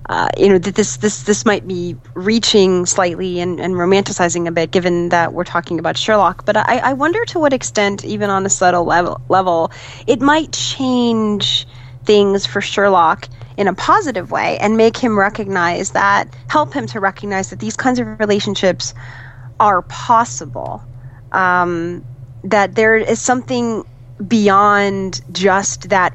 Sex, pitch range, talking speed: female, 155-200 Hz, 155 wpm